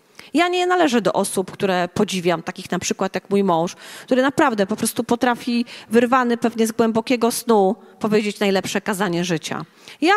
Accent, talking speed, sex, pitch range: native, 170 wpm, female, 190-265 Hz